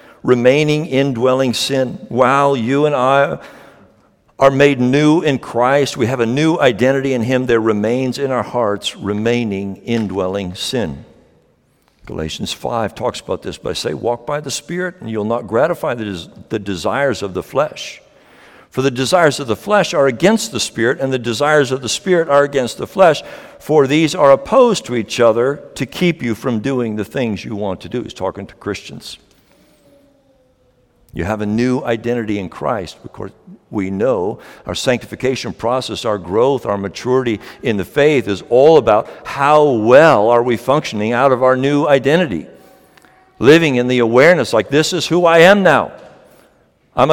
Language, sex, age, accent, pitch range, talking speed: English, male, 60-79, American, 115-150 Hz, 170 wpm